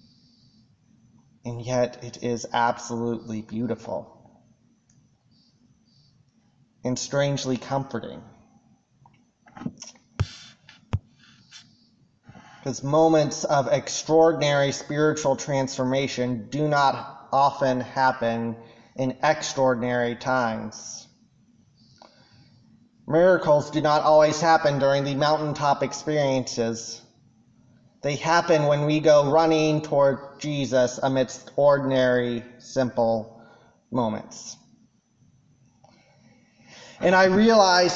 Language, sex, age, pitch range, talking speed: English, male, 30-49, 130-180 Hz, 75 wpm